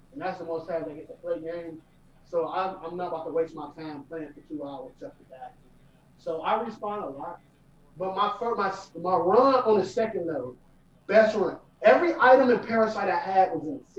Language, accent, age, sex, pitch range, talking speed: English, American, 30-49, male, 180-255 Hz, 210 wpm